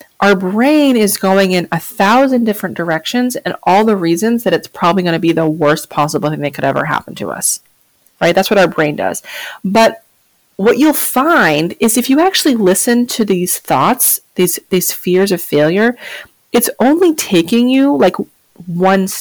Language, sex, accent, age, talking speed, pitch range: English, female, American, 30-49, 180 wpm, 175-245 Hz